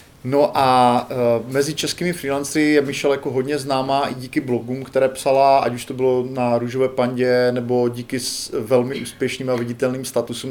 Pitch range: 115-135 Hz